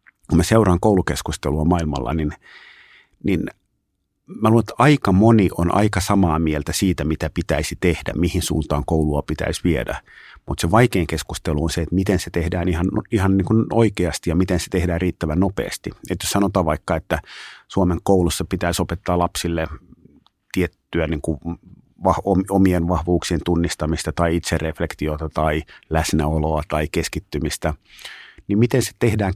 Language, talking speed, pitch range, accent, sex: Finnish, 135 wpm, 80-100 Hz, native, male